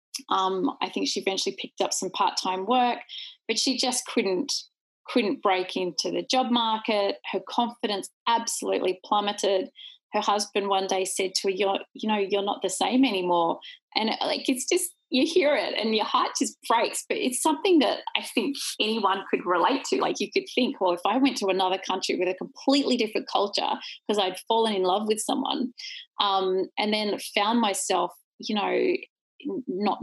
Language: English